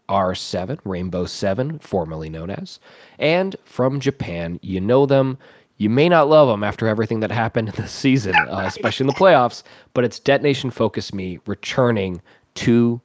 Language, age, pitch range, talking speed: English, 20-39, 100-140 Hz, 160 wpm